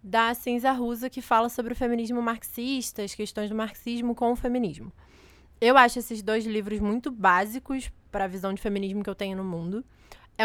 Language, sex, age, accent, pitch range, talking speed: Portuguese, female, 20-39, Brazilian, 200-245 Hz, 195 wpm